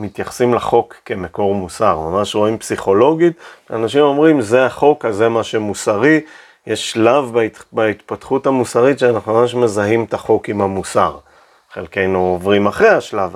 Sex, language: male, Hebrew